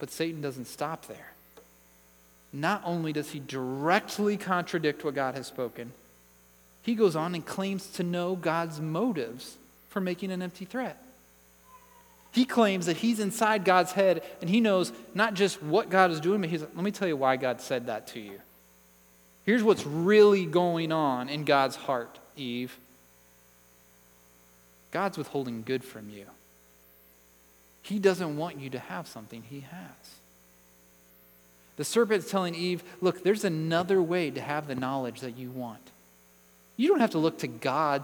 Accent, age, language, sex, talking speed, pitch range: American, 30-49, English, male, 160 wpm, 120-195 Hz